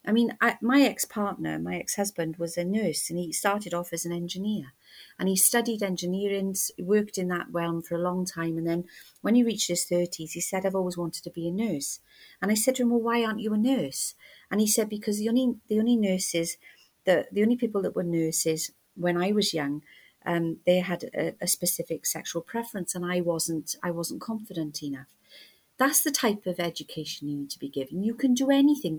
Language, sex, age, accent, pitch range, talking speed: English, female, 40-59, British, 170-220 Hz, 215 wpm